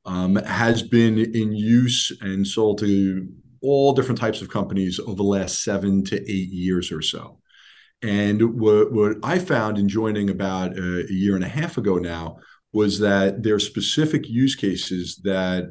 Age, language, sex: 40-59, English, male